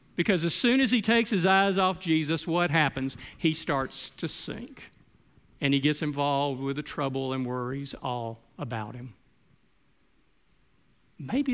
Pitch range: 140-225 Hz